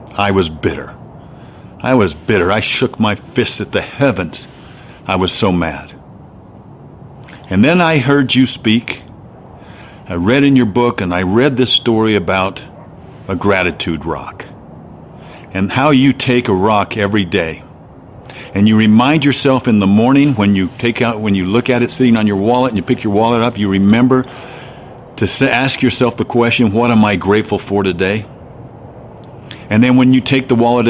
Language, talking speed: English, 175 wpm